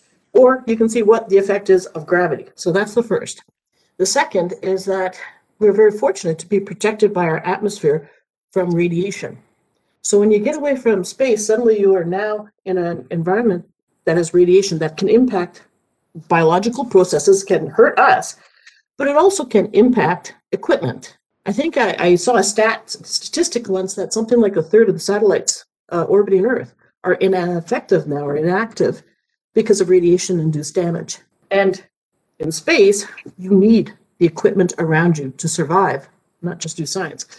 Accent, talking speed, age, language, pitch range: American, 165 wpm, 50-69, English, 175-225 Hz